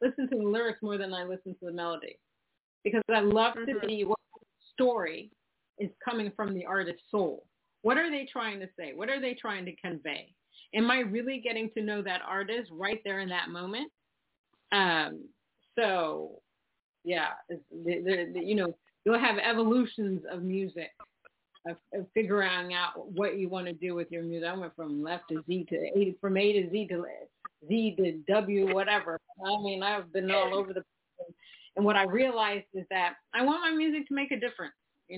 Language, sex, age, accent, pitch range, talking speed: English, female, 40-59, American, 180-225 Hz, 195 wpm